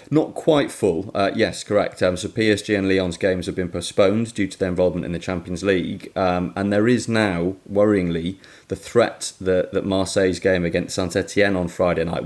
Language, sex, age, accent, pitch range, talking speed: English, male, 30-49, British, 85-100 Hz, 195 wpm